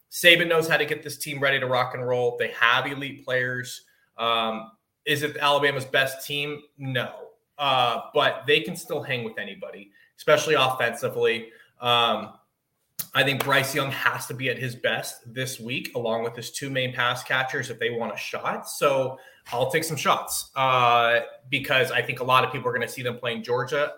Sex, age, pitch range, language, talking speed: male, 20-39, 120-150 Hz, English, 195 wpm